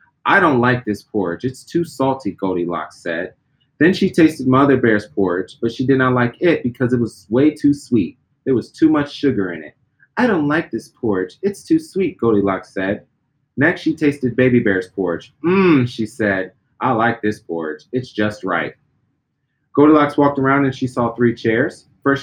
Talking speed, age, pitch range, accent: 190 wpm, 30-49, 115-150 Hz, American